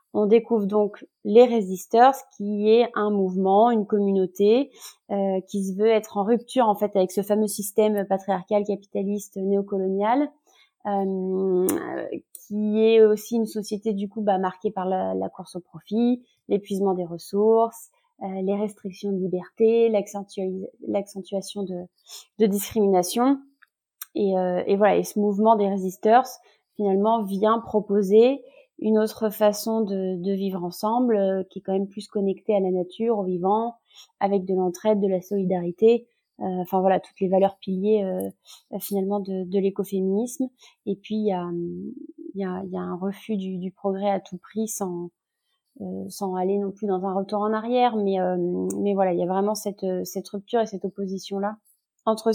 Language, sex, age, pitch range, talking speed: French, female, 20-39, 190-220 Hz, 170 wpm